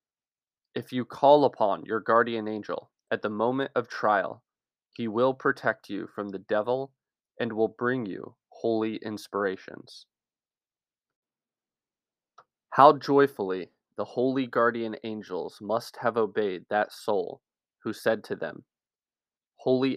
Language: English